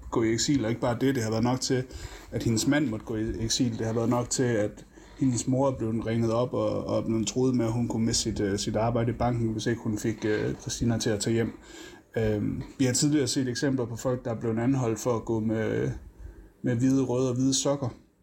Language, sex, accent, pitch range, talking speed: Danish, male, native, 110-130 Hz, 245 wpm